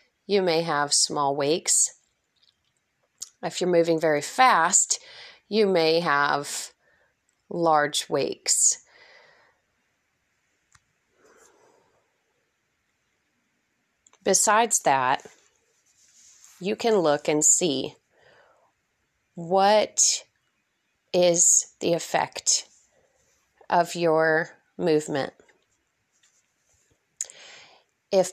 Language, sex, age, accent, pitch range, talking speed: English, female, 30-49, American, 155-220 Hz, 65 wpm